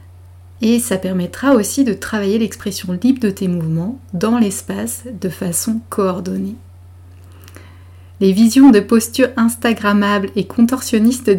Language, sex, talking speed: French, female, 120 wpm